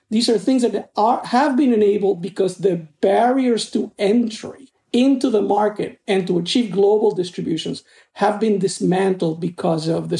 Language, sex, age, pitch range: English, male, 50-69, 185-230 Hz